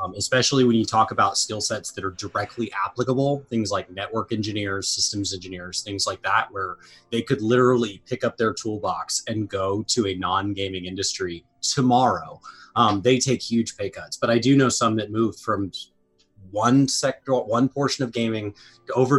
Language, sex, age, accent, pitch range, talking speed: English, male, 30-49, American, 105-140 Hz, 180 wpm